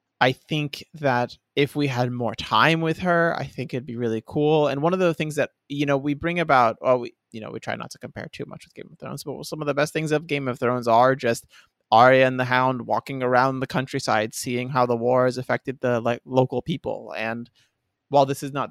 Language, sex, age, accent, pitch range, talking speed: English, male, 20-39, American, 120-145 Hz, 245 wpm